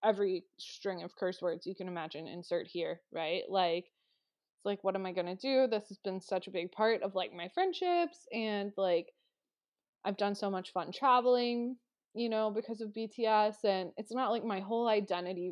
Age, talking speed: 20-39, 195 wpm